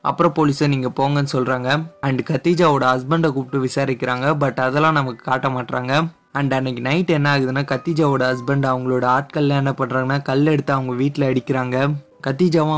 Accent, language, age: native, Tamil, 20-39